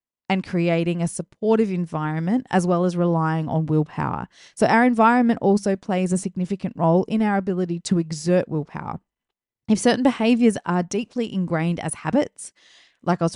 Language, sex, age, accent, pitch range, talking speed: English, female, 20-39, Australian, 165-220 Hz, 160 wpm